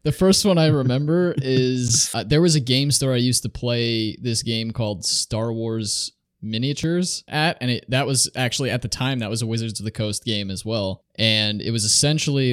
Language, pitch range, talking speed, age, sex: English, 105-130 Hz, 210 wpm, 20-39, male